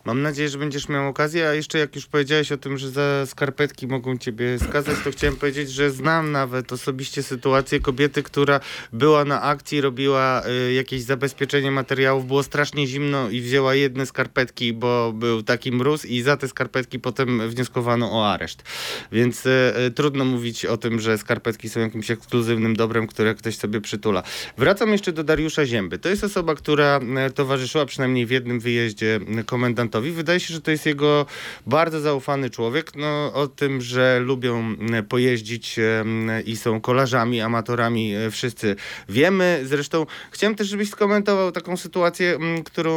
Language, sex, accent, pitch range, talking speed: Polish, male, native, 120-150 Hz, 160 wpm